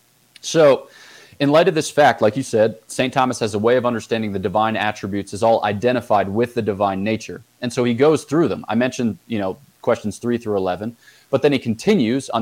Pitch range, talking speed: 105-130 Hz, 215 wpm